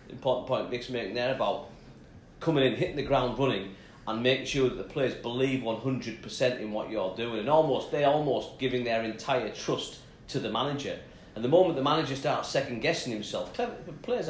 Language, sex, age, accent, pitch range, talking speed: English, male, 40-59, British, 110-130 Hz, 190 wpm